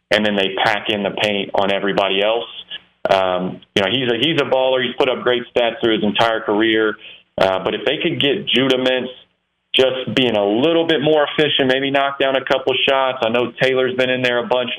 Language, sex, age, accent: English, male, 40-59, American